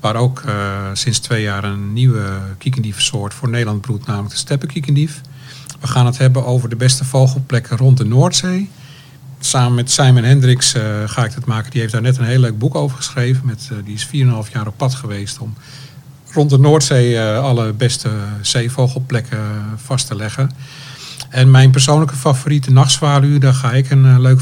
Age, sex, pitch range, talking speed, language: 50-69, male, 120-135 Hz, 190 wpm, Dutch